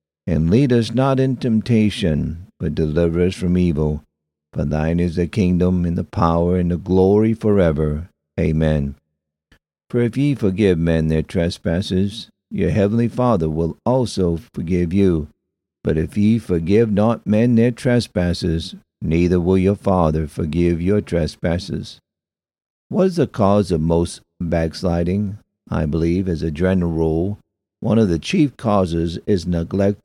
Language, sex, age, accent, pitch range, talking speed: English, male, 50-69, American, 85-105 Hz, 145 wpm